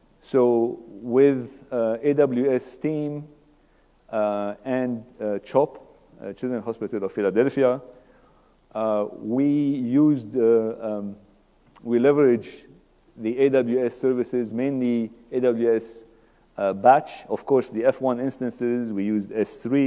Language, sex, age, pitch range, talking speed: English, male, 50-69, 105-130 Hz, 110 wpm